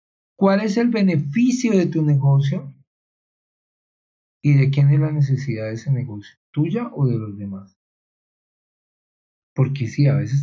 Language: Spanish